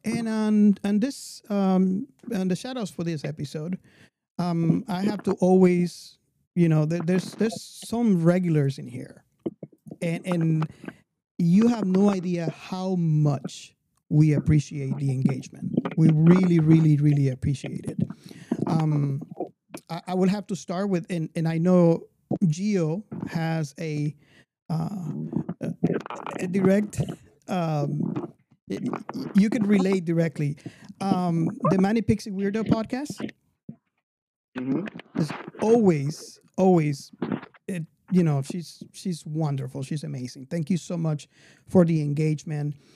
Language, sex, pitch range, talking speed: English, male, 155-190 Hz, 125 wpm